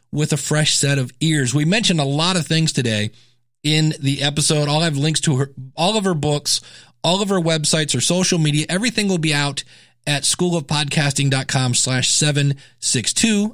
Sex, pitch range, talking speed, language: male, 125-155 Hz, 175 wpm, English